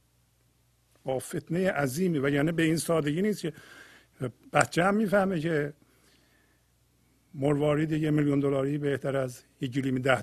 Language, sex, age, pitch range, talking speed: Persian, male, 50-69, 125-155 Hz, 125 wpm